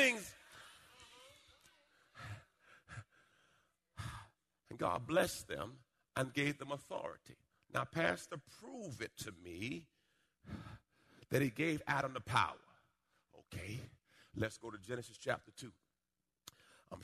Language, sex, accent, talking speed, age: English, male, American, 100 wpm, 50-69